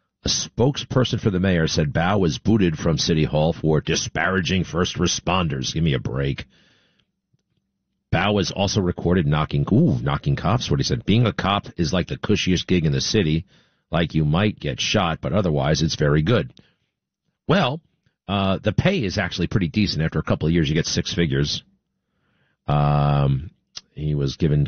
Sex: male